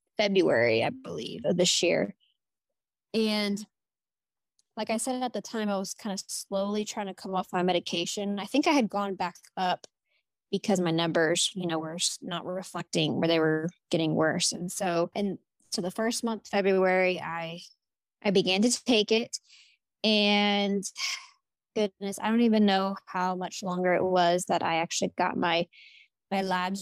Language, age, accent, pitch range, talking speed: English, 20-39, American, 175-210 Hz, 170 wpm